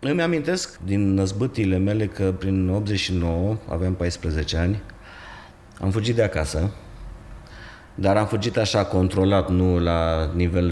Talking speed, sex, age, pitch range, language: 130 wpm, male, 30-49, 85-105 Hz, Romanian